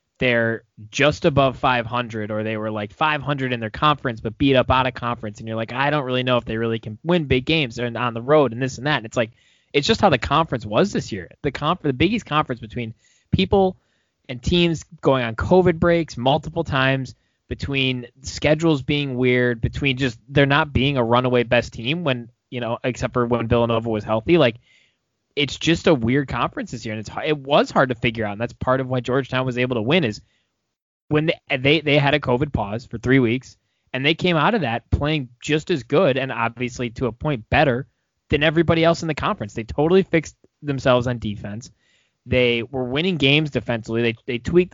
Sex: male